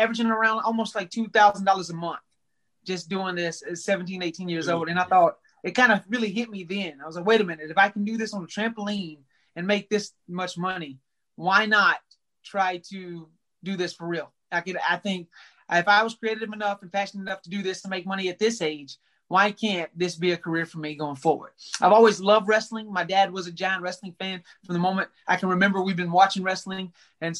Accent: American